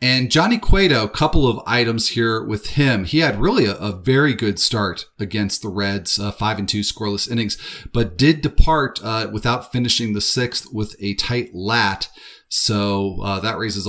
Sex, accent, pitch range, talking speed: male, American, 100-125 Hz, 185 wpm